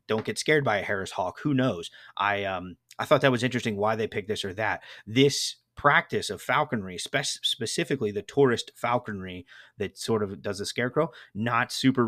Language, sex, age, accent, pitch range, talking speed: English, male, 30-49, American, 105-130 Hz, 195 wpm